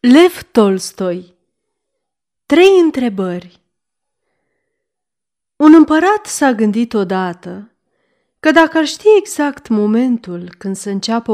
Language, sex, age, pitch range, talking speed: Romanian, female, 30-49, 195-285 Hz, 95 wpm